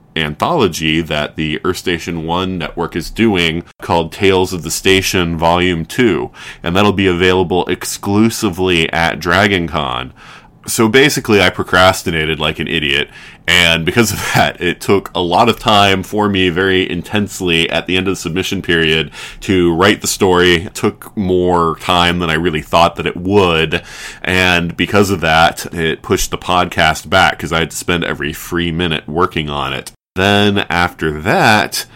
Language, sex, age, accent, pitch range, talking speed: English, male, 20-39, American, 80-95 Hz, 165 wpm